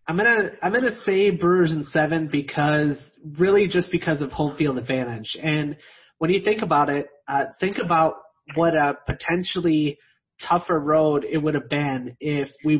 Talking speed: 180 wpm